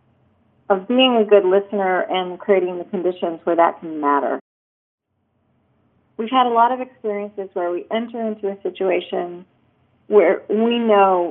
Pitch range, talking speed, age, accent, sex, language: 175-225 Hz, 150 wpm, 40-59, American, female, English